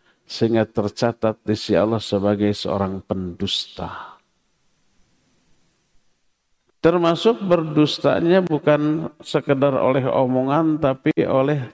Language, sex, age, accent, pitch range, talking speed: Indonesian, male, 50-69, native, 110-155 Hz, 80 wpm